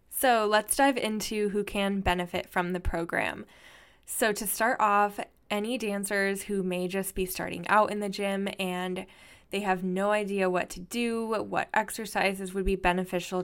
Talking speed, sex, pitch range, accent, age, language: 170 wpm, female, 180-205 Hz, American, 10-29, English